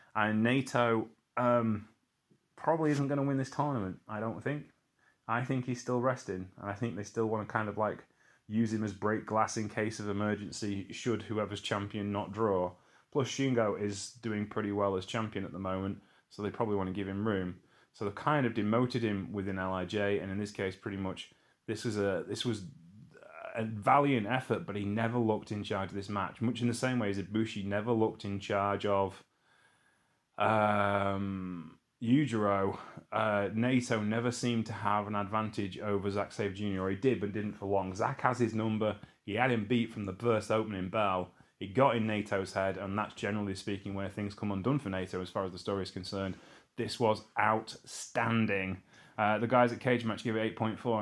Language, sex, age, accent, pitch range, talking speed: English, male, 30-49, British, 100-115 Hz, 200 wpm